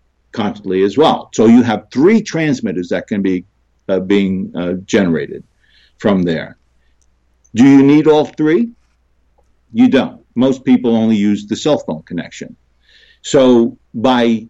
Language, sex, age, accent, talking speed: English, male, 50-69, American, 140 wpm